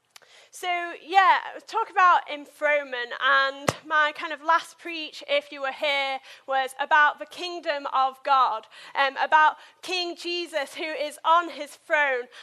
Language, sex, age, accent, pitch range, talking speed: English, female, 30-49, British, 270-325 Hz, 150 wpm